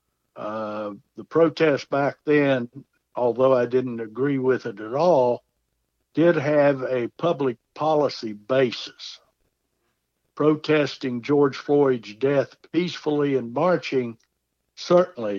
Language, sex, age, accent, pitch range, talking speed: English, male, 60-79, American, 115-150 Hz, 105 wpm